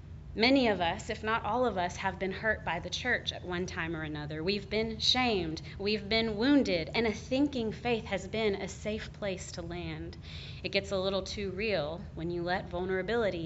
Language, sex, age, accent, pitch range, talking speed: English, female, 30-49, American, 185-230 Hz, 205 wpm